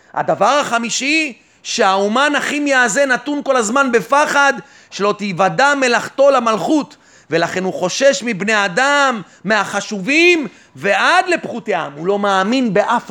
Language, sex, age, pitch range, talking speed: Hebrew, male, 30-49, 215-280 Hz, 115 wpm